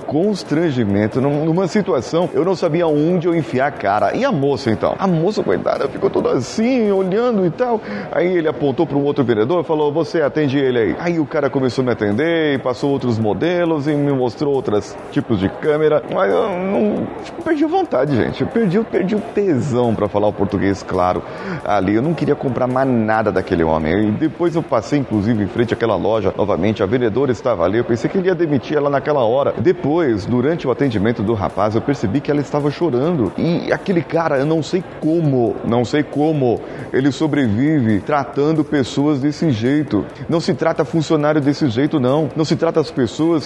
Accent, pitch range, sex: Brazilian, 125-165 Hz, male